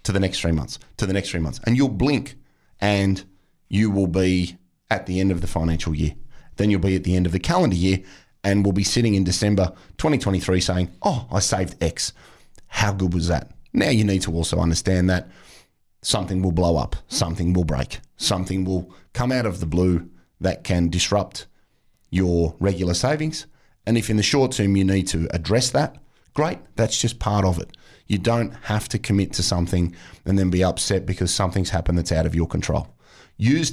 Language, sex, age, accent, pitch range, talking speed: English, male, 30-49, Australian, 90-105 Hz, 205 wpm